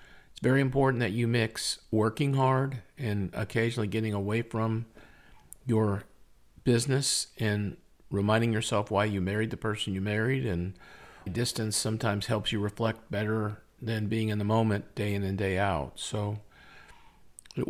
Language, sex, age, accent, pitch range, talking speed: English, male, 50-69, American, 105-120 Hz, 145 wpm